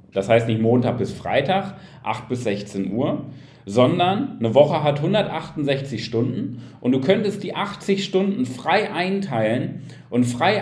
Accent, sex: German, male